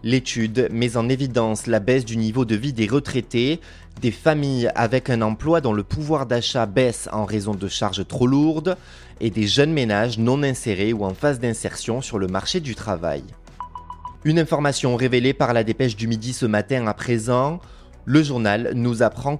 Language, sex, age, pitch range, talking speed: French, male, 20-39, 105-140 Hz, 185 wpm